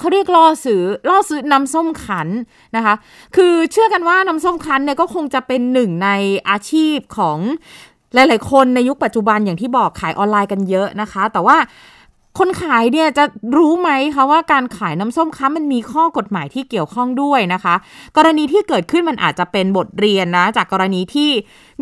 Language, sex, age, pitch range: Thai, female, 20-39, 205-310 Hz